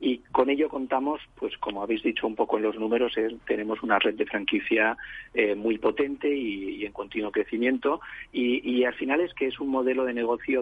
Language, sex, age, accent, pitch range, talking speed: Spanish, male, 40-59, Spanish, 110-130 Hz, 215 wpm